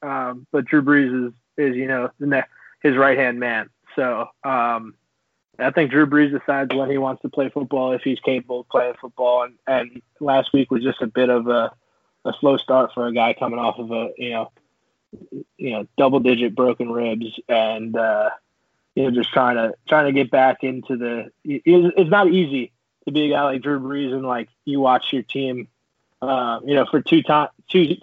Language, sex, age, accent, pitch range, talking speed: English, male, 20-39, American, 125-145 Hz, 205 wpm